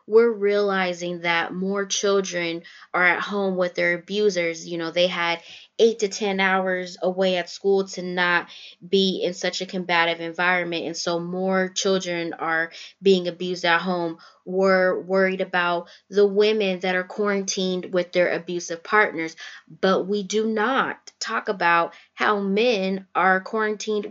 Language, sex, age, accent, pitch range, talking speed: English, female, 20-39, American, 180-210 Hz, 150 wpm